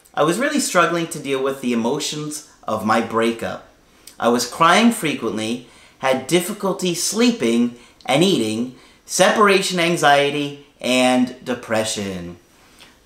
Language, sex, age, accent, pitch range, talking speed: English, male, 40-59, American, 120-165 Hz, 120 wpm